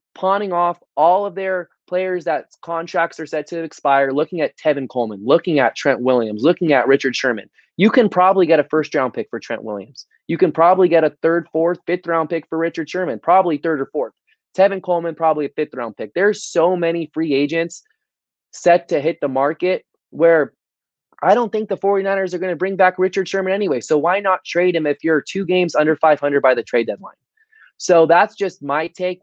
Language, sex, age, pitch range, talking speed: English, male, 20-39, 145-180 Hz, 210 wpm